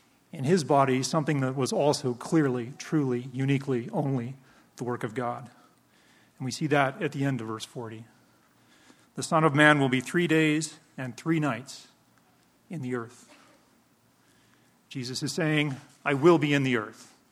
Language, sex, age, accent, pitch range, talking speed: English, male, 40-59, American, 130-155 Hz, 165 wpm